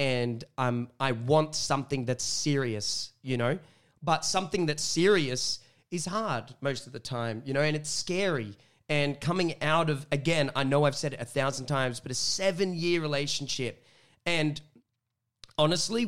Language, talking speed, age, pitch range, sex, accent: English, 160 wpm, 20-39, 125-150 Hz, male, Australian